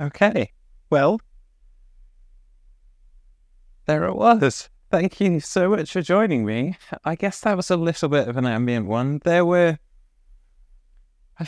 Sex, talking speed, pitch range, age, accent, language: male, 135 wpm, 100-145 Hz, 30-49, British, English